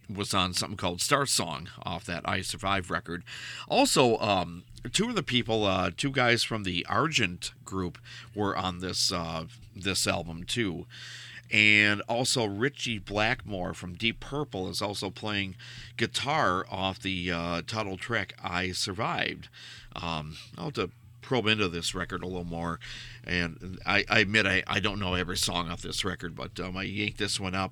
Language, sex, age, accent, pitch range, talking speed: English, male, 50-69, American, 90-120 Hz, 175 wpm